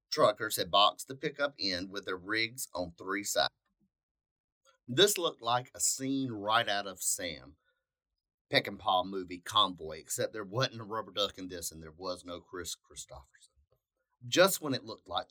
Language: English